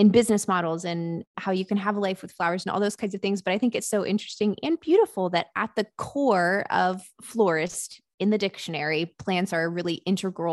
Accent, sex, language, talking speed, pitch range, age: American, female, English, 230 wpm, 180-220 Hz, 20-39